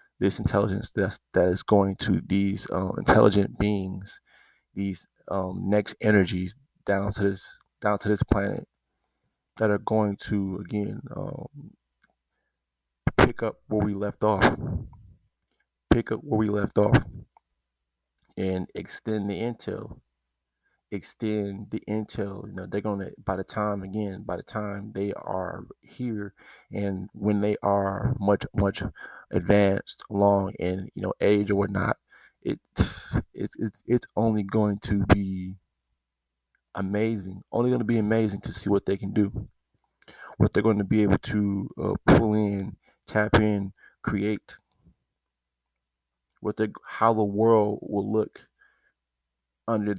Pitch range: 95-105 Hz